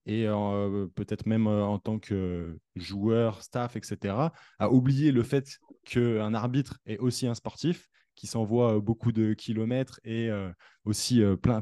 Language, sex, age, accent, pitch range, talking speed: French, male, 20-39, French, 105-125 Hz, 155 wpm